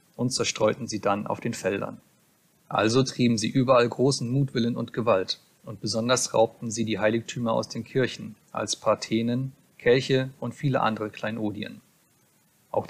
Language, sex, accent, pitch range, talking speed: German, male, German, 110-130 Hz, 150 wpm